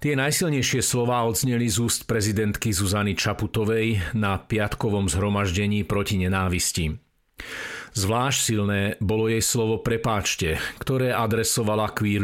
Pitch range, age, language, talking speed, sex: 100-125 Hz, 50-69, Slovak, 115 wpm, male